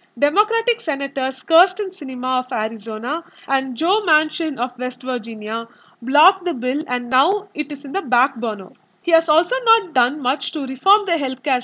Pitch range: 250-330 Hz